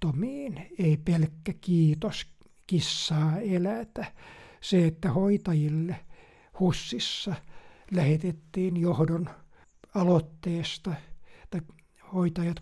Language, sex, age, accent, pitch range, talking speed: Finnish, male, 60-79, native, 160-200 Hz, 65 wpm